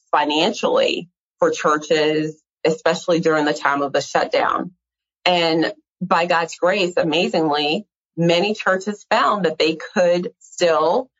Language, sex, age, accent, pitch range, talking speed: English, female, 30-49, American, 155-195 Hz, 120 wpm